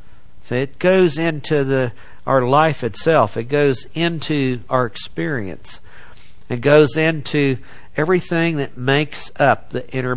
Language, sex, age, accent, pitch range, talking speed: English, male, 60-79, American, 115-145 Hz, 130 wpm